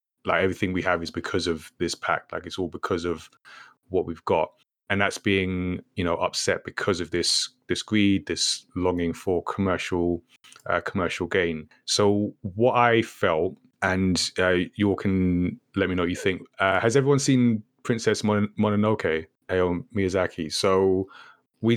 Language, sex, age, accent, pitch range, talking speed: English, male, 20-39, British, 90-100 Hz, 170 wpm